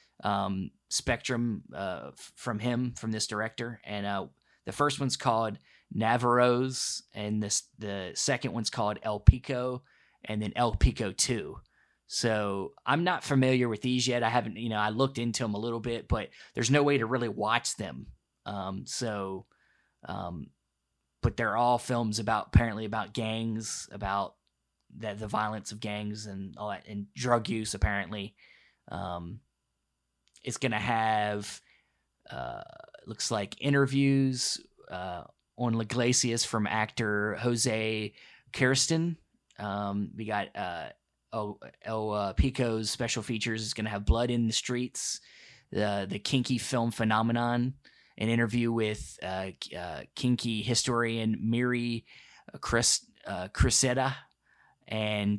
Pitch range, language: 105-120 Hz, English